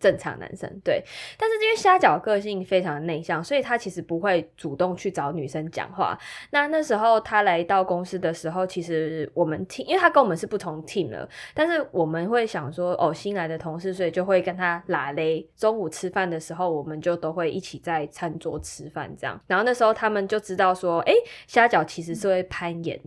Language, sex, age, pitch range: Chinese, female, 20-39, 165-210 Hz